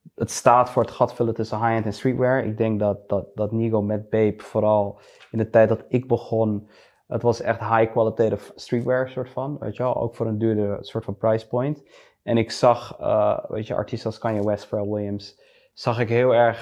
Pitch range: 105-120 Hz